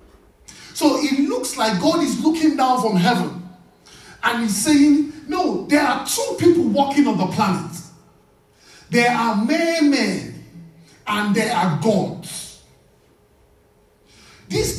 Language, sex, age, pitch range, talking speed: English, male, 50-69, 170-240 Hz, 120 wpm